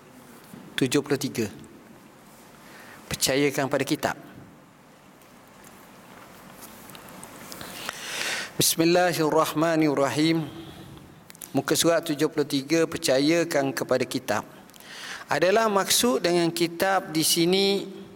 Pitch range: 145-175 Hz